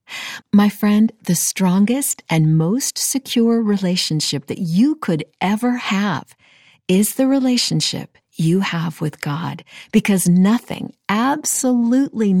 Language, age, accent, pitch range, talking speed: English, 50-69, American, 155-220 Hz, 110 wpm